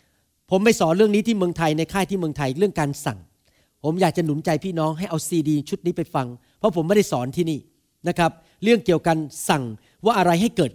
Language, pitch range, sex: Thai, 145-205 Hz, male